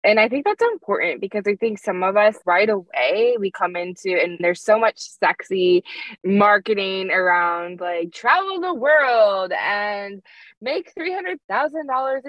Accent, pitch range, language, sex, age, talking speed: American, 180-275 Hz, English, female, 20-39, 145 wpm